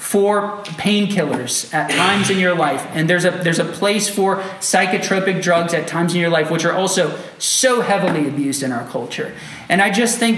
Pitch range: 150-205 Hz